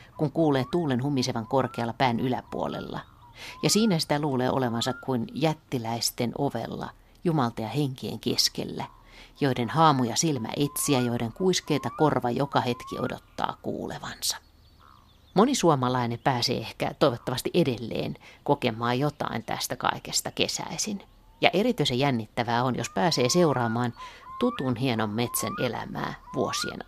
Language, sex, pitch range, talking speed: Finnish, female, 120-155 Hz, 120 wpm